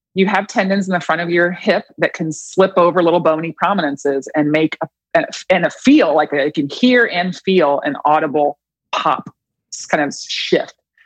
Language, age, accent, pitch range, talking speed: English, 30-49, American, 160-210 Hz, 180 wpm